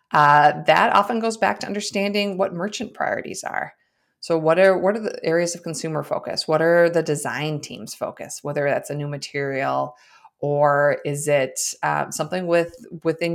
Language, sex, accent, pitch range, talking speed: English, female, American, 145-170 Hz, 175 wpm